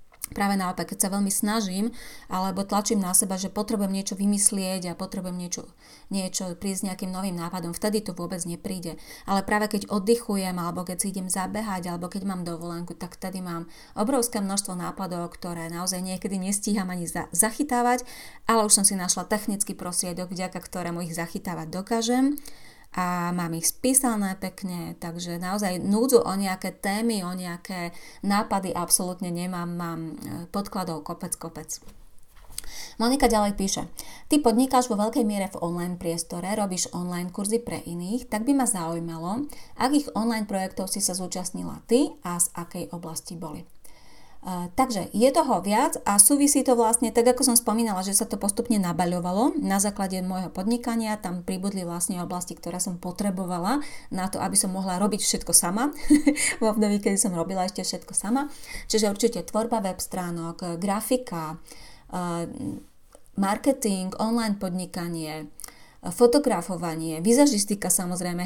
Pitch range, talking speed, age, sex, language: 175-215 Hz, 155 wpm, 30-49, female, Slovak